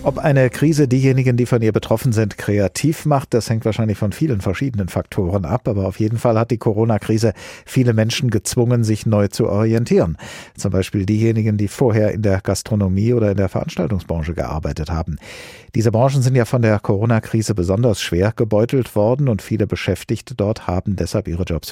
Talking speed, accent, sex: 180 wpm, German, male